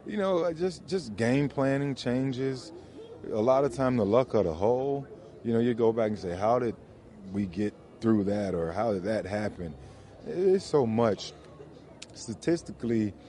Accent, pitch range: American, 95-120 Hz